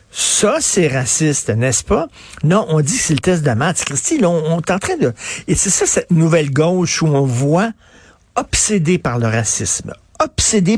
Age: 50-69